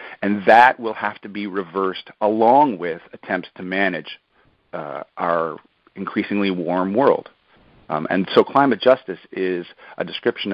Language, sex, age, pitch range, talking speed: English, male, 50-69, 95-115 Hz, 140 wpm